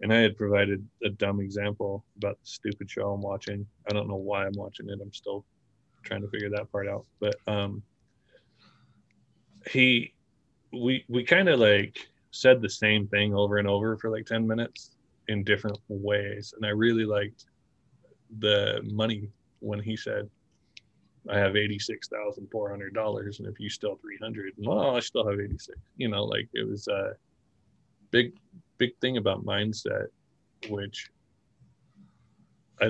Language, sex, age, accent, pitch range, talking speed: English, male, 20-39, American, 100-110 Hz, 155 wpm